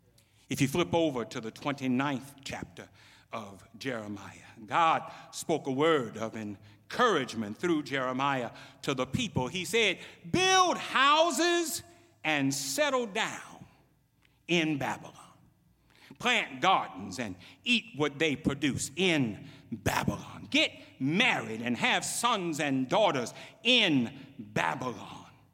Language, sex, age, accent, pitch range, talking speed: English, male, 60-79, American, 125-210 Hz, 115 wpm